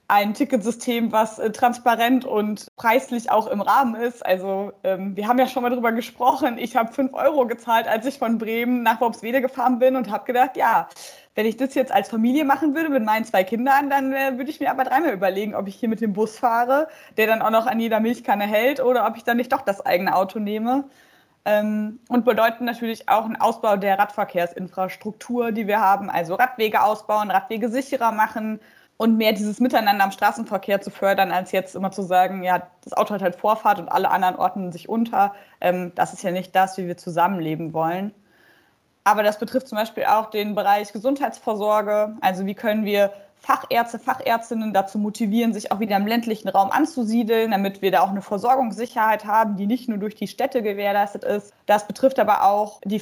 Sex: female